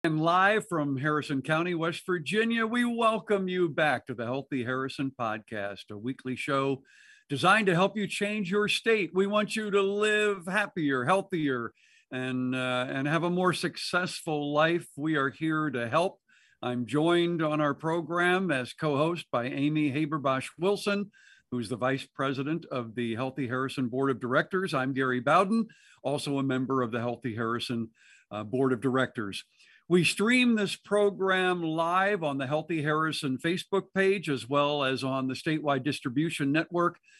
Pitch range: 130-180 Hz